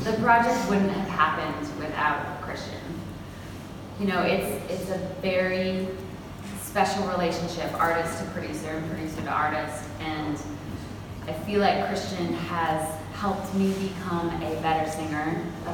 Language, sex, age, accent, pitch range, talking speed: English, female, 20-39, American, 160-200 Hz, 135 wpm